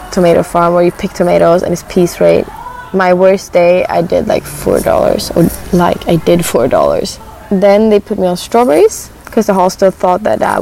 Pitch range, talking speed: 175-205 Hz, 210 wpm